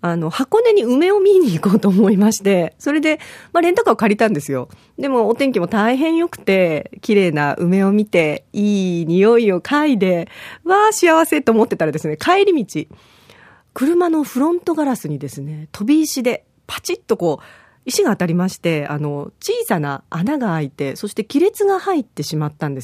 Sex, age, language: female, 40-59, Japanese